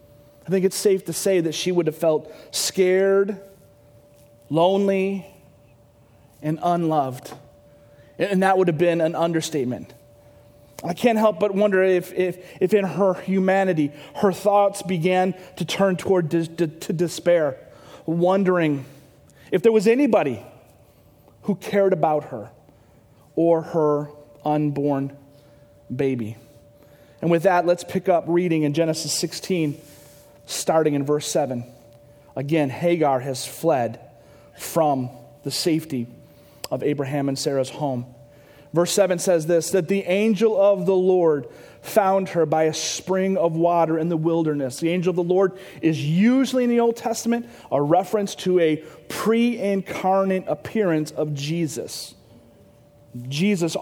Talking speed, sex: 130 wpm, male